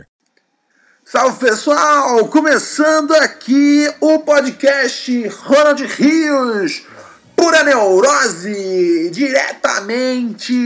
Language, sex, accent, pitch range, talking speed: Portuguese, male, Brazilian, 190-295 Hz, 60 wpm